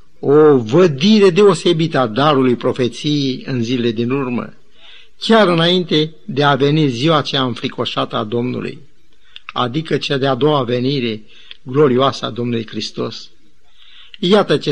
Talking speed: 125 wpm